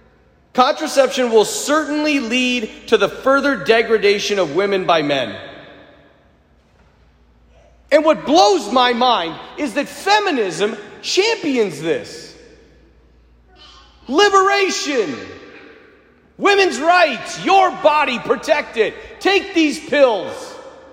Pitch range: 210-330 Hz